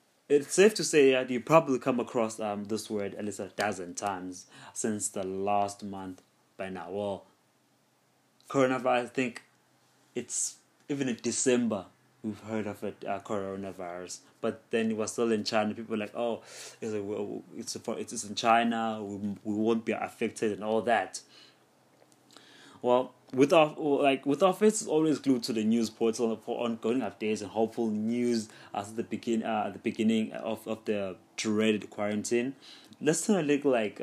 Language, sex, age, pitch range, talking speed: English, male, 20-39, 105-125 Hz, 170 wpm